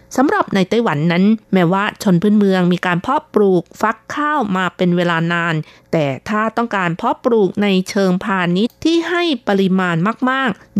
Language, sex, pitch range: Thai, female, 185-245 Hz